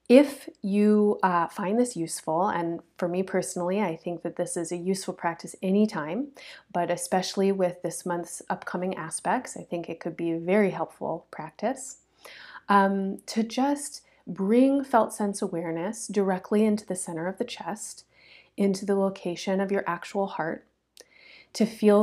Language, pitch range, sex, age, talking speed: English, 175-220 Hz, female, 30-49, 160 wpm